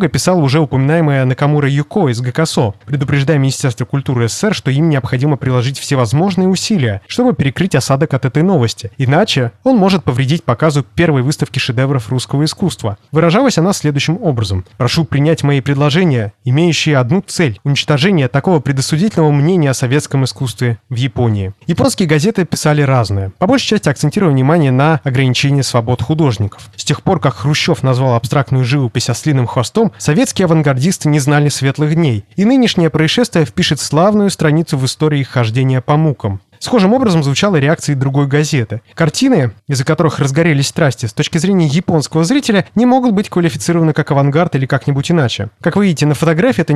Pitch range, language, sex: 130-170 Hz, Russian, male